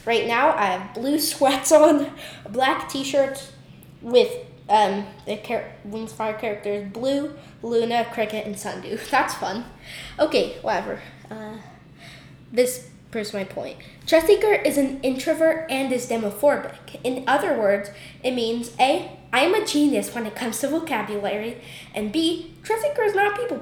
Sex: female